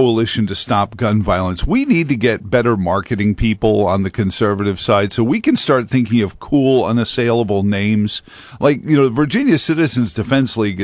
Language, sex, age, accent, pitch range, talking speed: English, male, 50-69, American, 105-130 Hz, 175 wpm